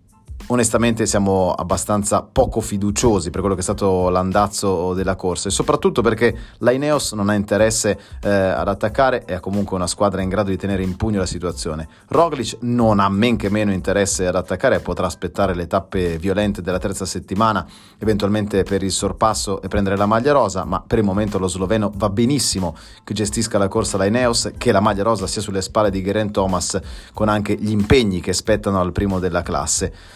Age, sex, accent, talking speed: 30-49, male, native, 190 wpm